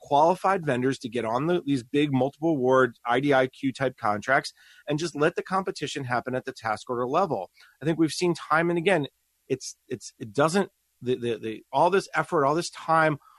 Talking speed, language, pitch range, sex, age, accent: 195 wpm, English, 125-160 Hz, male, 30-49, American